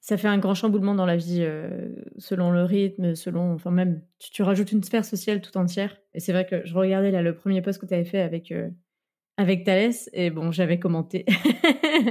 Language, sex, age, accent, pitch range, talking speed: French, female, 20-39, French, 175-205 Hz, 225 wpm